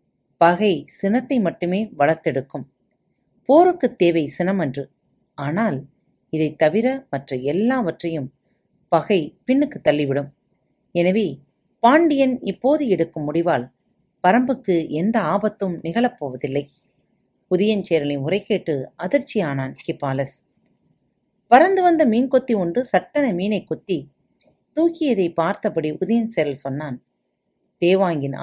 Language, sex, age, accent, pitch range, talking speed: Tamil, female, 40-59, native, 155-245 Hz, 90 wpm